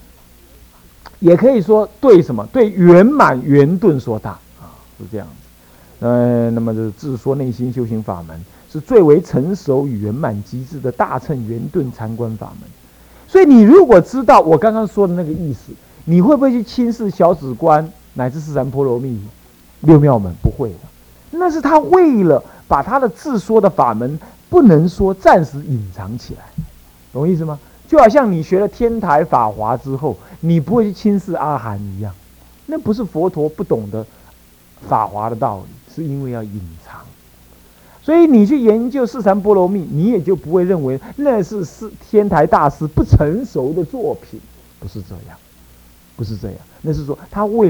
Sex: male